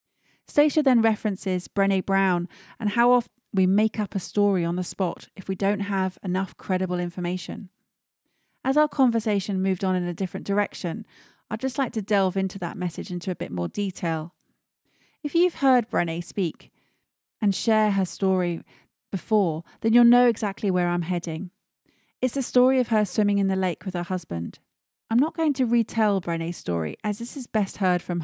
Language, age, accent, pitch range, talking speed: English, 30-49, British, 185-220 Hz, 185 wpm